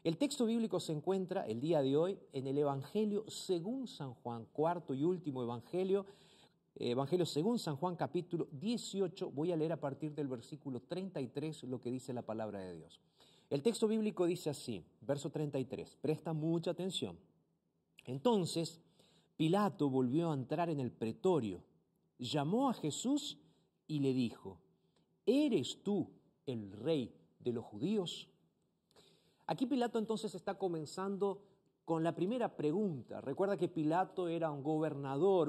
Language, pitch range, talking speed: Spanish, 140-190 Hz, 145 wpm